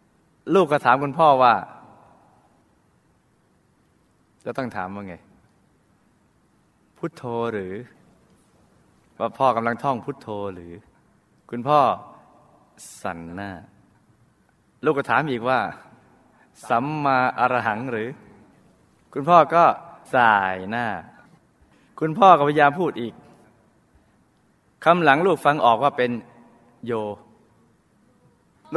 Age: 20-39